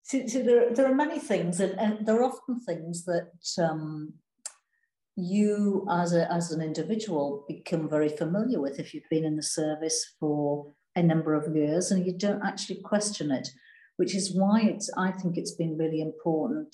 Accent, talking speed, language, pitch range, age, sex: British, 185 wpm, English, 160-205 Hz, 60-79, female